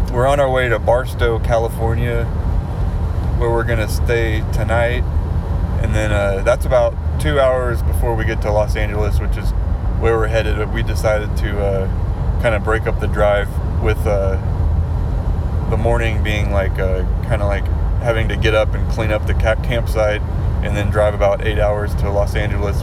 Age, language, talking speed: 20-39, English, 185 wpm